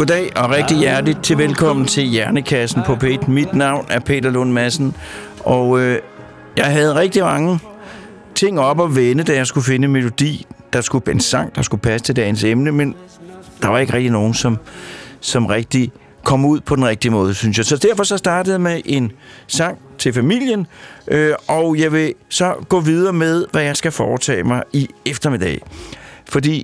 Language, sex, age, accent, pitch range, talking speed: Danish, male, 60-79, native, 115-145 Hz, 185 wpm